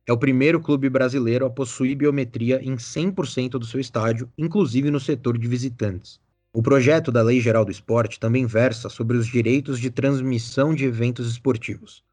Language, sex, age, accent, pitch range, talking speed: Portuguese, male, 20-39, Brazilian, 115-140 Hz, 175 wpm